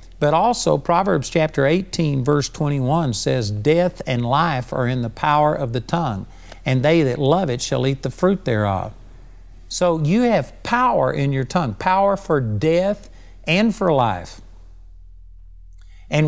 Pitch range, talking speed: 115-175 Hz, 155 wpm